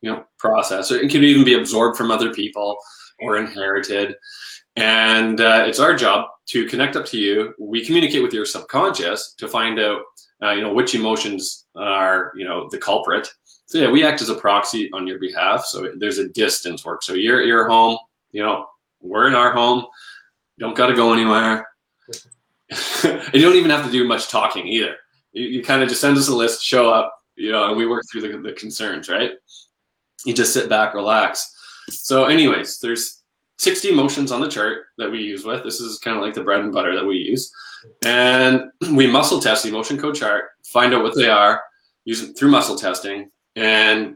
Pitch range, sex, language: 105-130 Hz, male, English